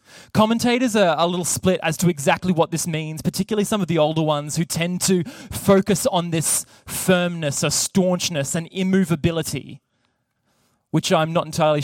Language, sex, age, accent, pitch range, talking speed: English, male, 20-39, Australian, 145-180 Hz, 160 wpm